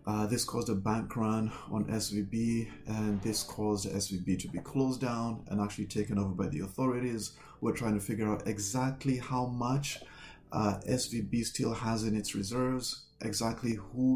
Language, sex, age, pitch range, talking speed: English, male, 30-49, 100-115 Hz, 175 wpm